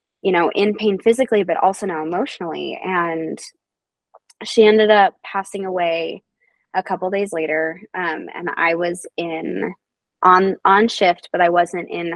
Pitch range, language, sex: 170-200 Hz, English, female